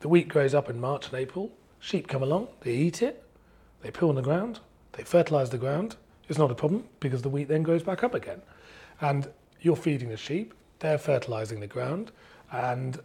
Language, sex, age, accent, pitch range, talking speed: English, male, 40-59, British, 115-155 Hz, 205 wpm